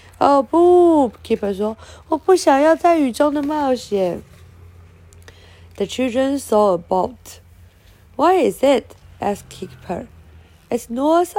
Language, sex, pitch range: Chinese, female, 195-285 Hz